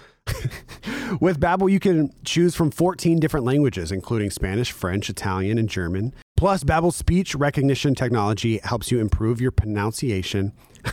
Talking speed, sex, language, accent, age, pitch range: 135 wpm, male, English, American, 30-49, 95-130 Hz